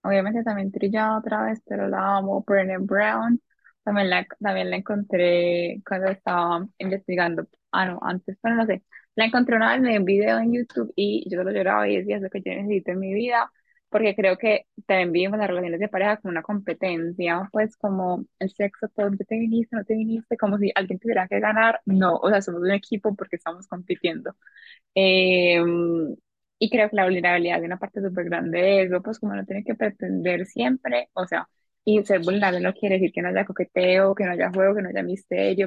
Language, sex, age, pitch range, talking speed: Spanish, female, 10-29, 180-210 Hz, 210 wpm